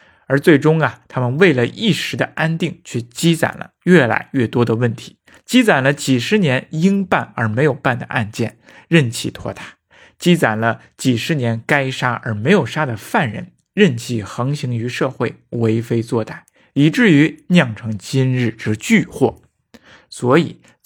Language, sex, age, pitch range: Chinese, male, 50-69, 120-155 Hz